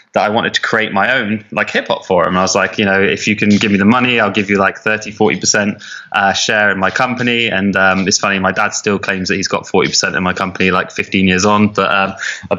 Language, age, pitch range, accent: English, 20-39, 100-110 Hz, British